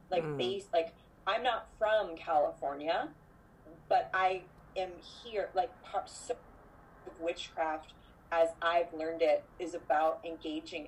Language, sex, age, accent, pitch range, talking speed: English, female, 30-49, American, 155-180 Hz, 125 wpm